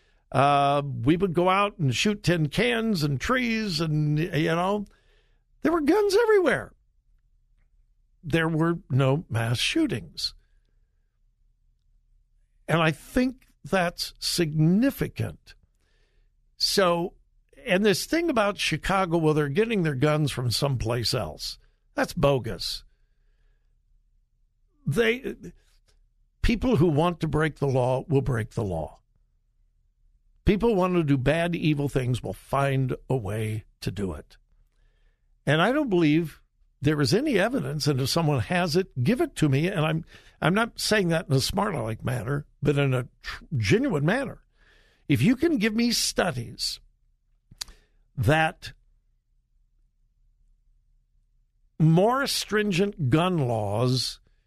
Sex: male